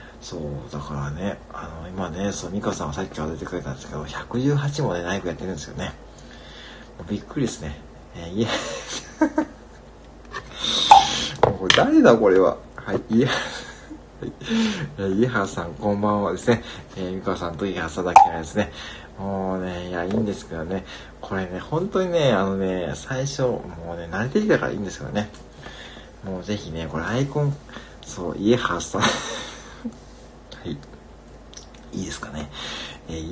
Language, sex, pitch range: Japanese, male, 80-120 Hz